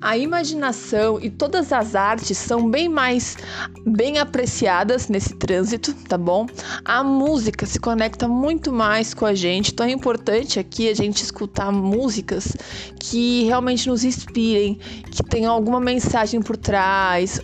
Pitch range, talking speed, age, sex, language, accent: 200-245 Hz, 145 wpm, 20-39, female, Portuguese, Brazilian